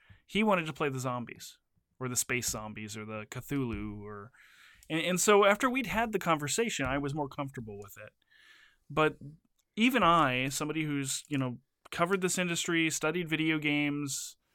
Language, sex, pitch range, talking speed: English, male, 120-160 Hz, 170 wpm